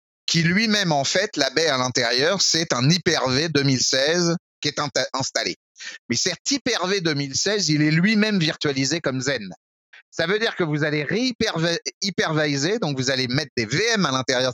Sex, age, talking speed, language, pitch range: male, 30-49, 165 wpm, French, 135-195 Hz